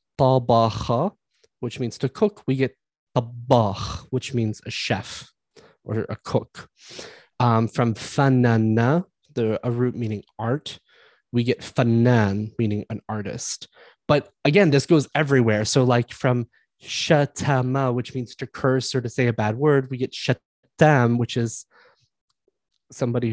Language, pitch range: English, 115-135 Hz